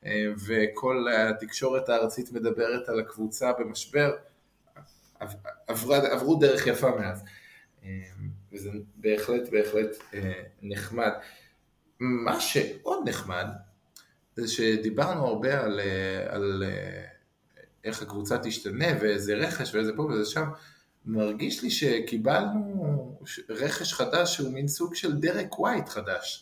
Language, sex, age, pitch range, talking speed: Hebrew, male, 20-39, 105-130 Hz, 100 wpm